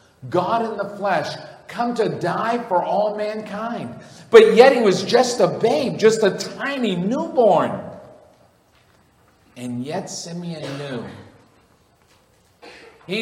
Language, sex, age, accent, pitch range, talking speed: English, male, 50-69, American, 160-210 Hz, 120 wpm